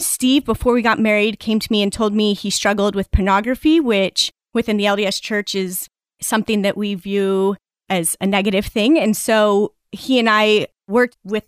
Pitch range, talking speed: 200-230 Hz, 190 wpm